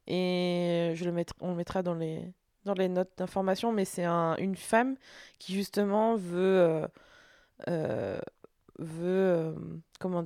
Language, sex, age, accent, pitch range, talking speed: French, female, 20-39, French, 180-205 Hz, 150 wpm